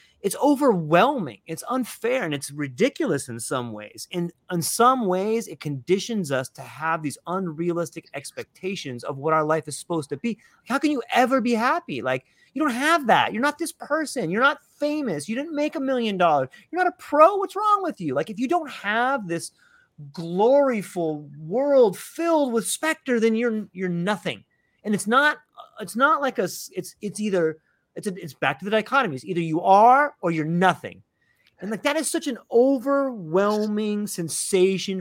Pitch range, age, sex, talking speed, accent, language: 160-250 Hz, 30-49, male, 185 wpm, American, English